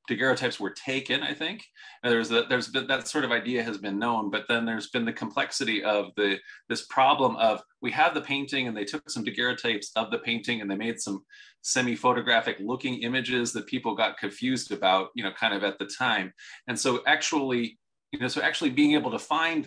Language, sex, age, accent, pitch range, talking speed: English, male, 30-49, American, 110-135 Hz, 210 wpm